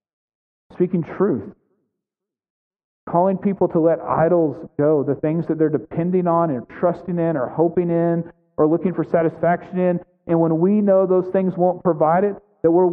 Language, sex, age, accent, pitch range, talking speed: English, male, 40-59, American, 150-180 Hz, 165 wpm